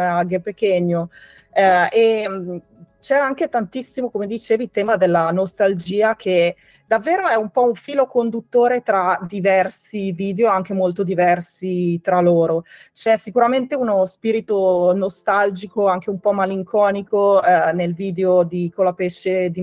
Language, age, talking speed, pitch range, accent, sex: Italian, 30-49, 125 wpm, 180-220 Hz, native, female